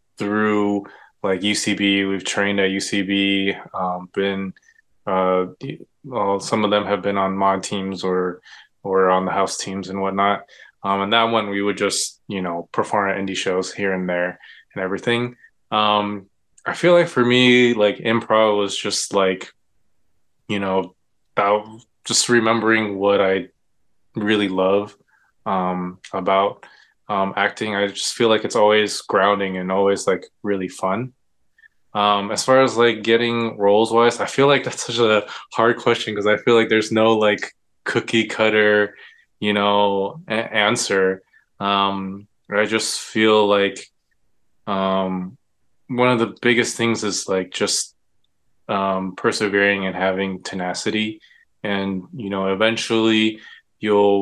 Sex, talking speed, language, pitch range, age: male, 145 wpm, English, 95-110 Hz, 20-39